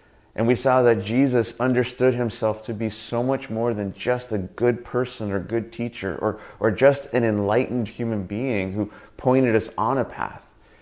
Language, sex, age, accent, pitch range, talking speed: English, male, 30-49, American, 110-130 Hz, 185 wpm